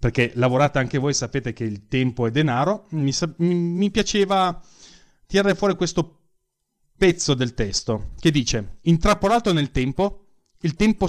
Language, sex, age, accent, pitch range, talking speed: Italian, male, 30-49, native, 125-170 Hz, 145 wpm